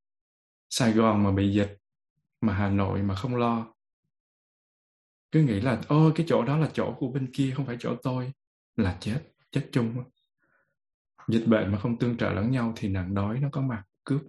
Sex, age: male, 20-39